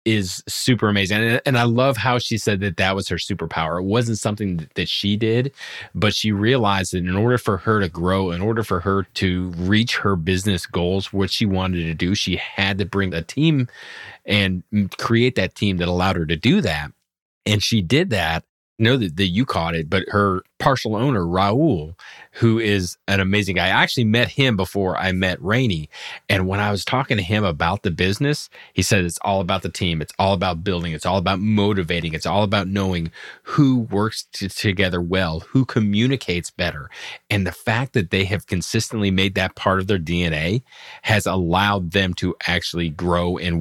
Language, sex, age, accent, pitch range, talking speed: English, male, 30-49, American, 90-105 Hz, 200 wpm